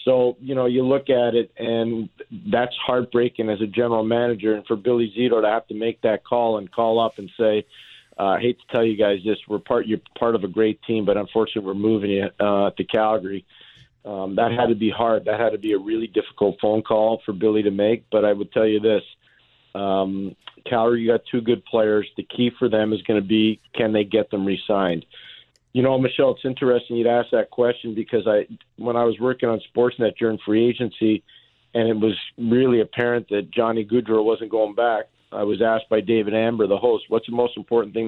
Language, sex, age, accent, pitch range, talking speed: English, male, 40-59, American, 105-120 Hz, 225 wpm